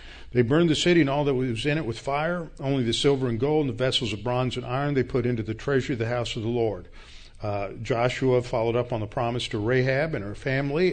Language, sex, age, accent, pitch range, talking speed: English, male, 50-69, American, 110-135 Hz, 260 wpm